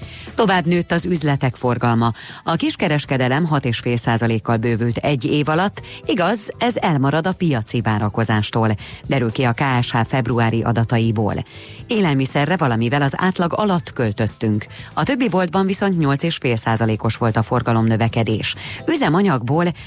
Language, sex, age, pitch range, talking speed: Hungarian, female, 30-49, 115-165 Hz, 120 wpm